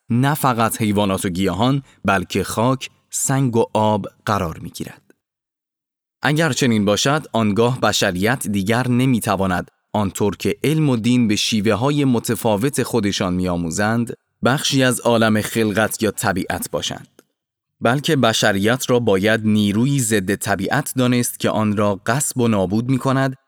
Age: 20-39